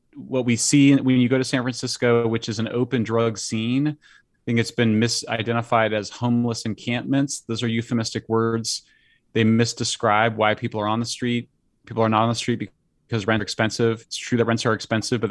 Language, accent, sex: English, American, male